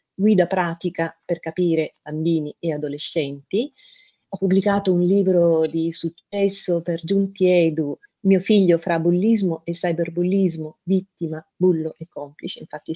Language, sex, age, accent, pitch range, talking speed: Italian, female, 40-59, native, 165-195 Hz, 125 wpm